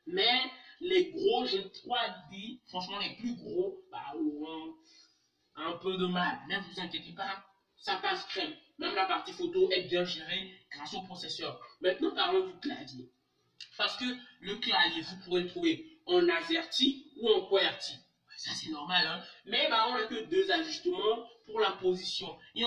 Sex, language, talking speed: male, French, 165 wpm